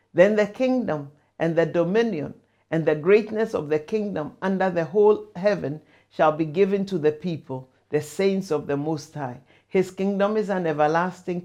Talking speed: 175 wpm